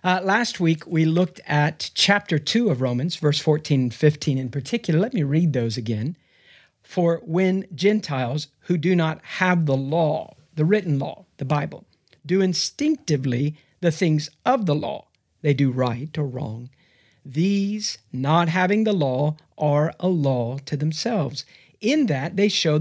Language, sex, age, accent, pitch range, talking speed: English, male, 50-69, American, 140-180 Hz, 160 wpm